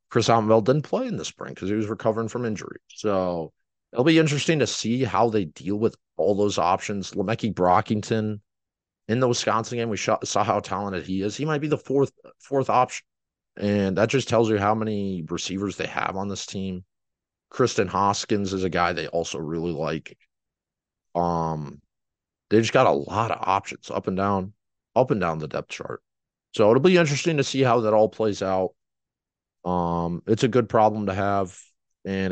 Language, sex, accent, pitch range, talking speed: English, male, American, 90-115 Hz, 190 wpm